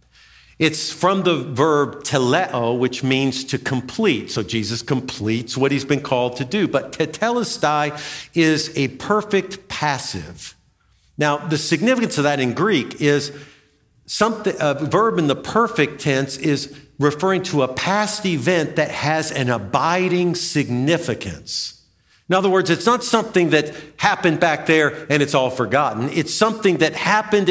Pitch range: 130-190 Hz